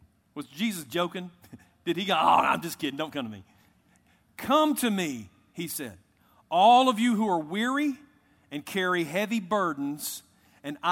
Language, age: English, 40-59